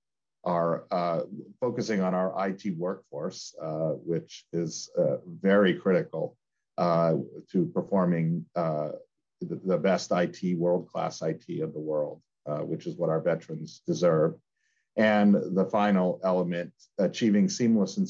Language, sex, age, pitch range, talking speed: English, male, 50-69, 90-125 Hz, 135 wpm